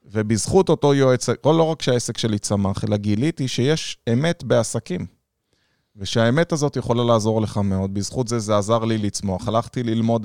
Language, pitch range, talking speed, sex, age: Hebrew, 110-150 Hz, 165 wpm, male, 20-39